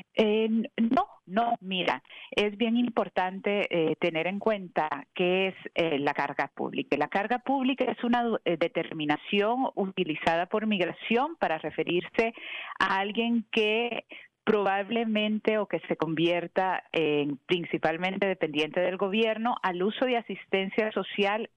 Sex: female